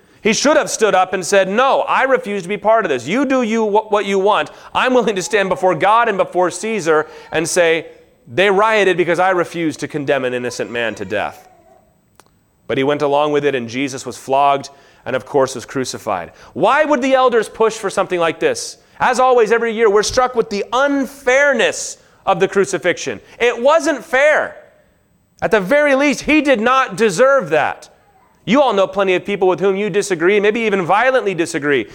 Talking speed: 200 wpm